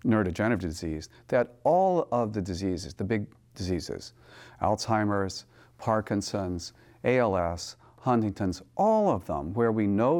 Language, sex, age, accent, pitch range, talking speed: English, male, 40-59, American, 105-145 Hz, 120 wpm